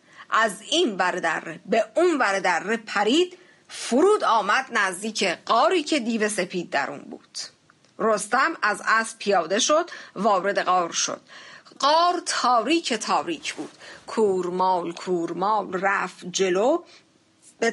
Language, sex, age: Persian, female, 50-69